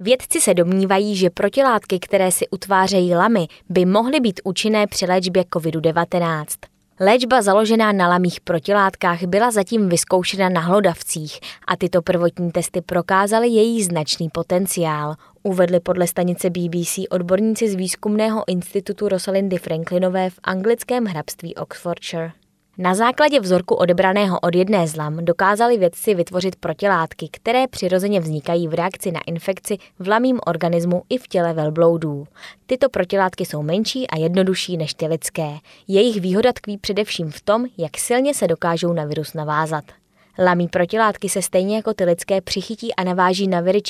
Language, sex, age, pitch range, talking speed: Czech, female, 20-39, 170-205 Hz, 150 wpm